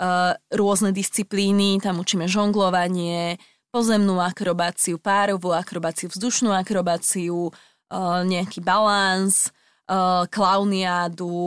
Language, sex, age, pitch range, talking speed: Slovak, female, 20-39, 180-205 Hz, 75 wpm